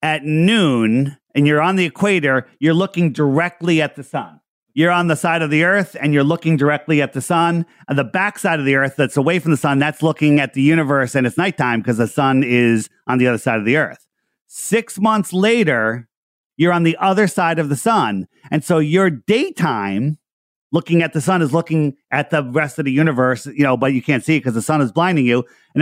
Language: English